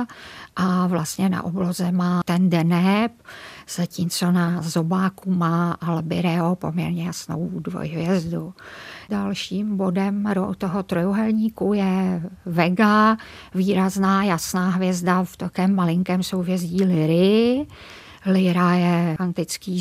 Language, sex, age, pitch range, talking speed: Czech, female, 50-69, 175-190 Hz, 95 wpm